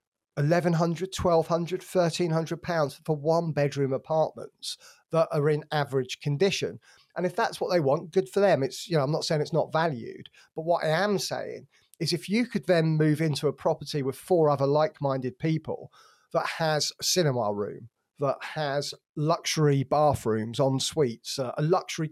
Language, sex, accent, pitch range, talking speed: English, male, British, 145-175 Hz, 175 wpm